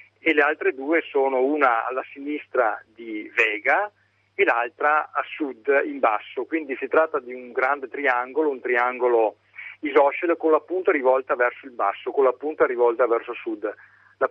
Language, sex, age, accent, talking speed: Italian, male, 40-59, native, 170 wpm